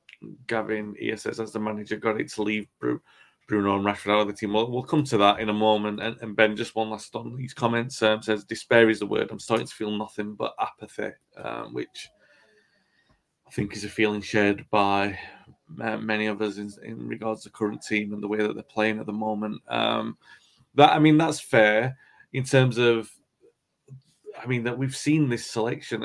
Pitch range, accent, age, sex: 105-125 Hz, British, 30-49, male